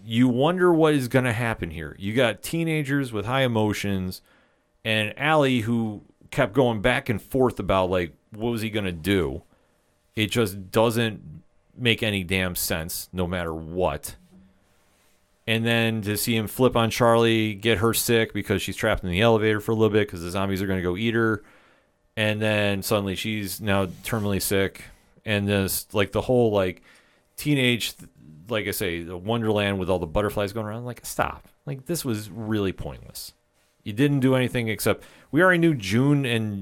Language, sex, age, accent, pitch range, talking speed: English, male, 40-59, American, 95-120 Hz, 185 wpm